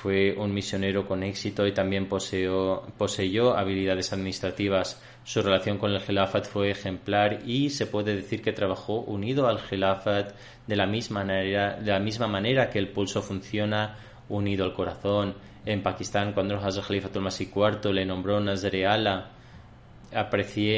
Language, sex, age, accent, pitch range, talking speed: Spanish, male, 20-39, Spanish, 95-120 Hz, 140 wpm